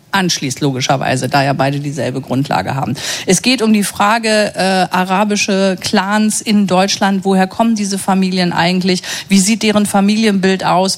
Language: German